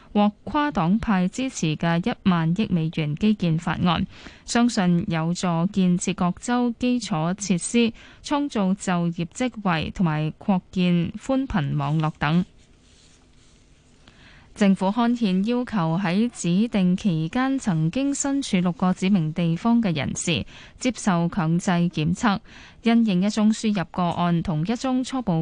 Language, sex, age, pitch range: Chinese, female, 10-29, 170-225 Hz